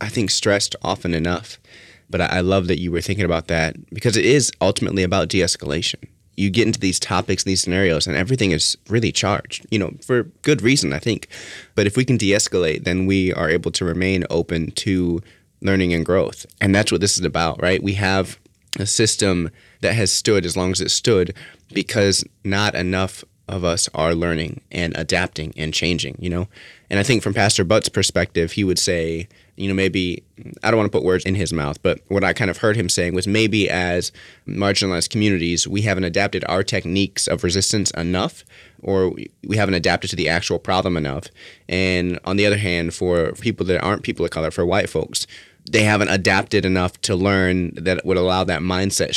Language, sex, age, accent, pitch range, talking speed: English, male, 30-49, American, 85-100 Hz, 200 wpm